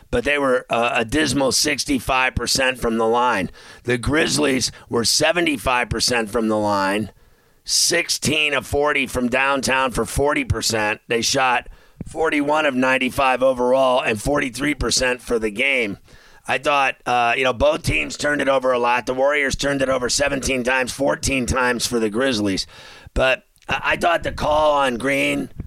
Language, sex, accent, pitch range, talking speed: English, male, American, 120-140 Hz, 155 wpm